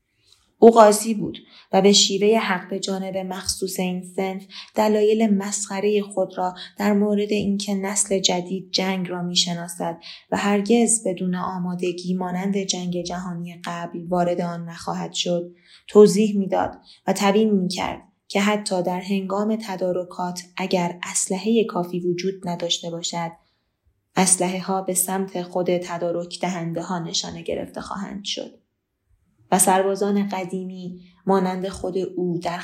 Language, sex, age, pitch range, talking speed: Persian, female, 20-39, 180-200 Hz, 130 wpm